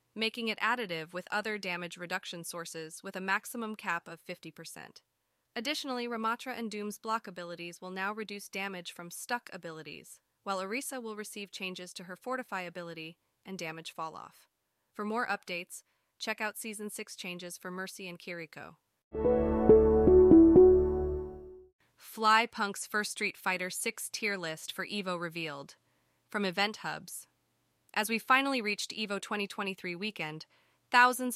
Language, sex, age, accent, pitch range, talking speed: English, female, 20-39, American, 175-220 Hz, 140 wpm